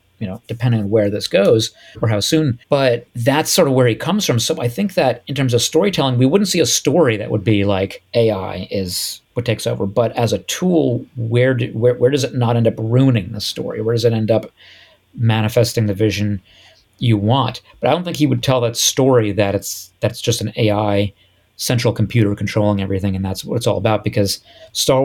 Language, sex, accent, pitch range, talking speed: English, male, American, 105-125 Hz, 225 wpm